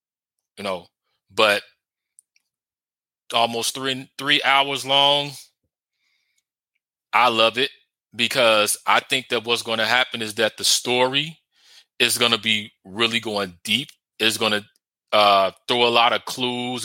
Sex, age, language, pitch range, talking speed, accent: male, 20-39, English, 115-135 Hz, 140 wpm, American